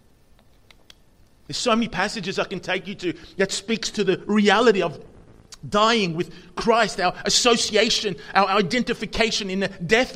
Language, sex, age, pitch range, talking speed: English, male, 30-49, 200-280 Hz, 150 wpm